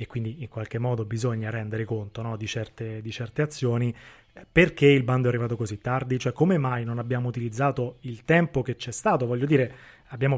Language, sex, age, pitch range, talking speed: Italian, male, 20-39, 120-140 Hz, 190 wpm